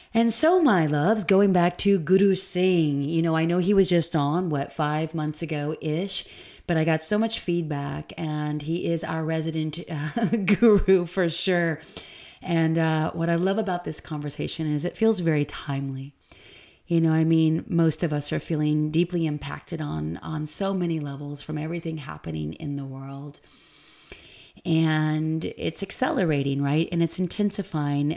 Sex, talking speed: female, 170 wpm